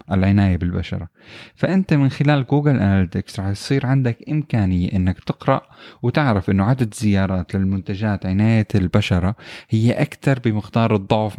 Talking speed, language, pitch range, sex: 125 wpm, Arabic, 95-120 Hz, male